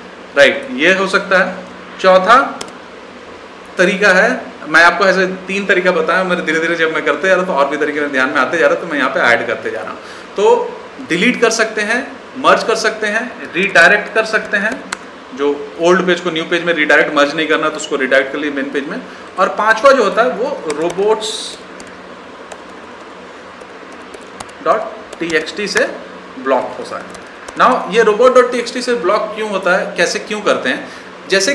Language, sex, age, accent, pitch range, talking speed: Hindi, male, 40-59, native, 175-235 Hz, 185 wpm